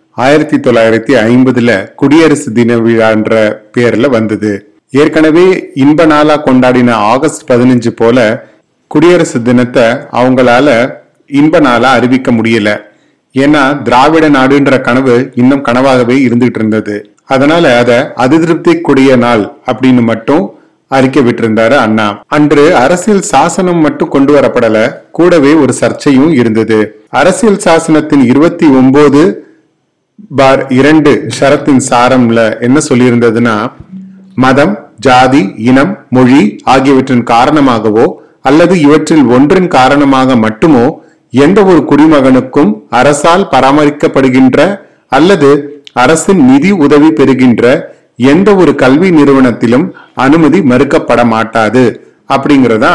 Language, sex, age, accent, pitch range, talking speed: Tamil, male, 30-49, native, 120-150 Hz, 90 wpm